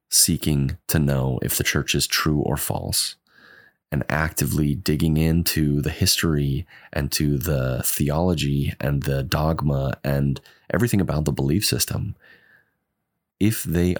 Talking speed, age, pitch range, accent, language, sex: 135 wpm, 20-39, 70-85 Hz, American, English, male